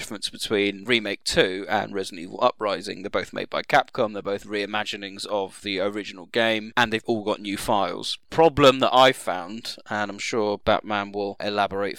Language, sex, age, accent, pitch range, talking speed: English, male, 30-49, British, 105-125 Hz, 180 wpm